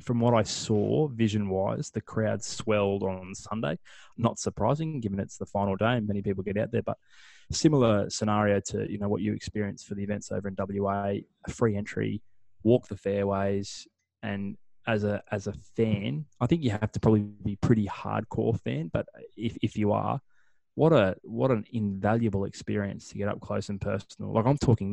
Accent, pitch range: Australian, 100-115 Hz